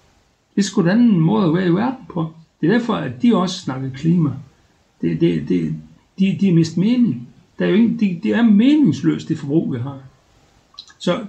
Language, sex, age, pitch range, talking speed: Danish, male, 60-79, 135-190 Hz, 200 wpm